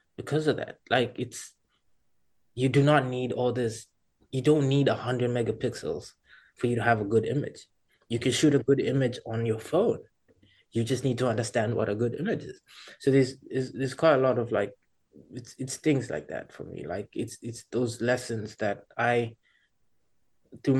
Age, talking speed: 20-39, 190 wpm